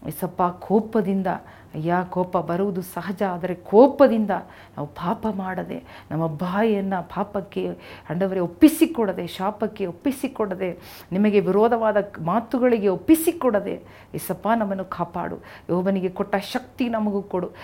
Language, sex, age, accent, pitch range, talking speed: Kannada, female, 40-59, native, 170-210 Hz, 105 wpm